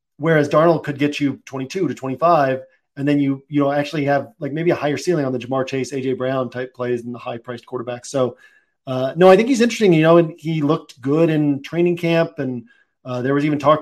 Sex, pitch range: male, 135-165 Hz